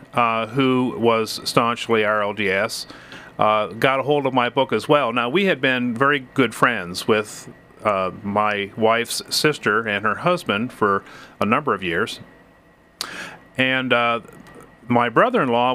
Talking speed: 145 wpm